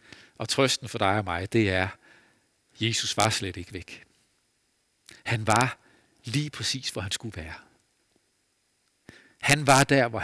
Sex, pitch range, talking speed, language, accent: male, 105-135 Hz, 150 wpm, Danish, native